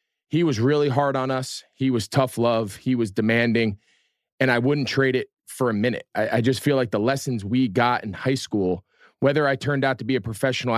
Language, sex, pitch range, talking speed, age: English, male, 105-130 Hz, 230 wpm, 30-49